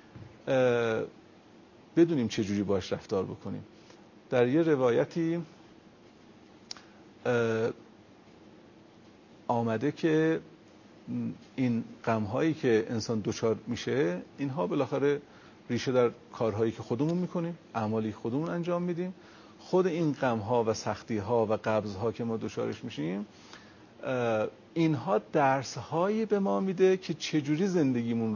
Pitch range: 115-160 Hz